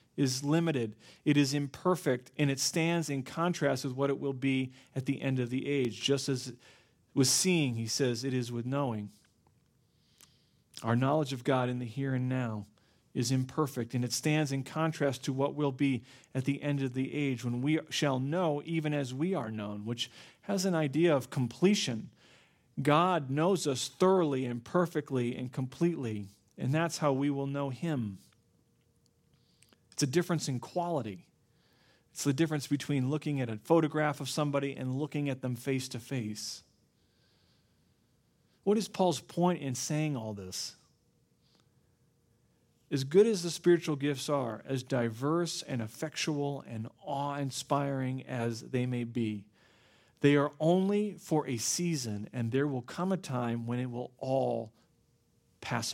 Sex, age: male, 40-59